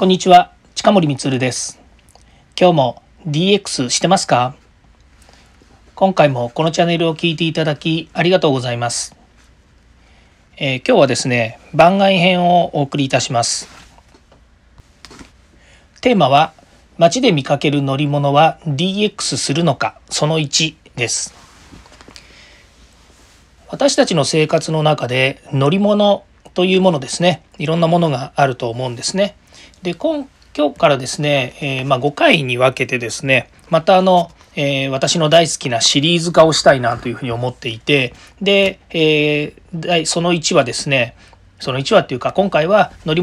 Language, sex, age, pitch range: Japanese, male, 40-59, 130-175 Hz